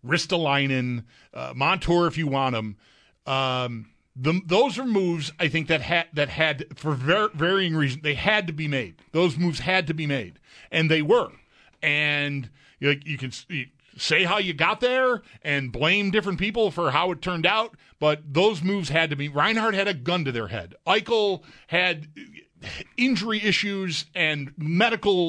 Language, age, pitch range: English, 40-59, 145-195 Hz